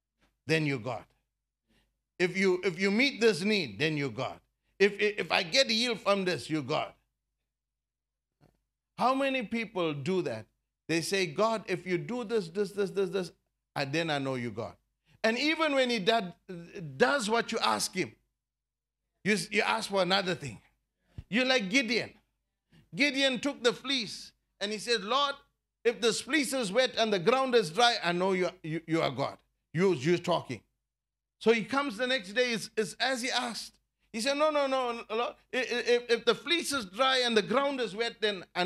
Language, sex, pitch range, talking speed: English, male, 155-235 Hz, 190 wpm